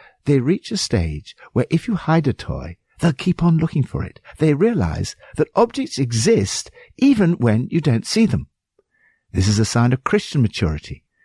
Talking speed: 180 wpm